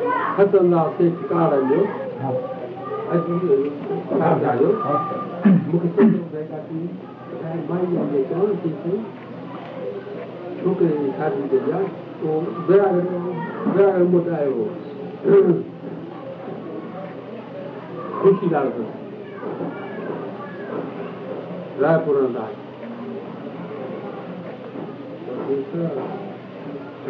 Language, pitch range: Hindi, 165-195 Hz